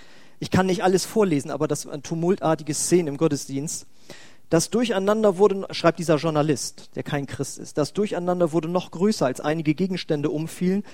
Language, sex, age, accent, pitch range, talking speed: German, male, 40-59, German, 150-190 Hz, 175 wpm